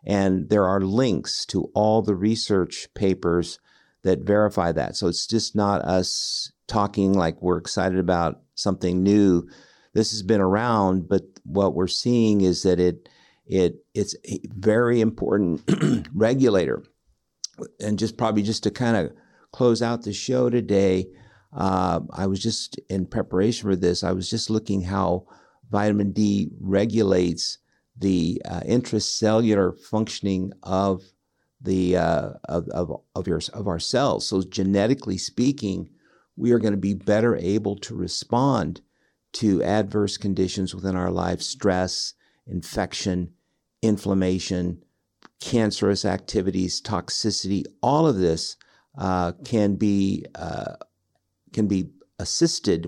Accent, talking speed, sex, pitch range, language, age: American, 135 wpm, male, 95-110 Hz, English, 50-69